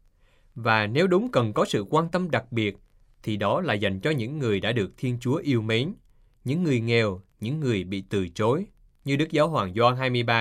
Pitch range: 100-140 Hz